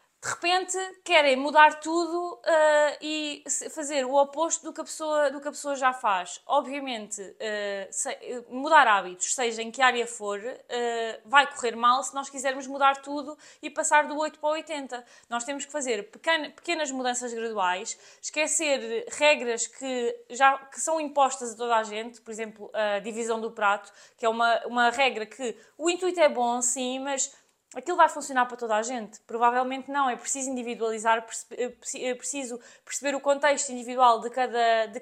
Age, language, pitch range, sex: 20-39, Portuguese, 240-300 Hz, female